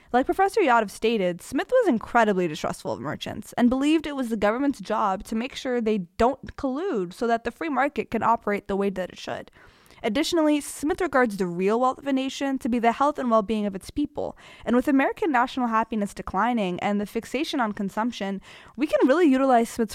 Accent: American